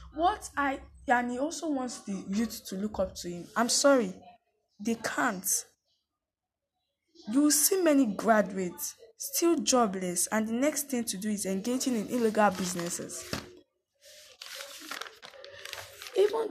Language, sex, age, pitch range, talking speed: English, female, 10-29, 195-285 Hz, 125 wpm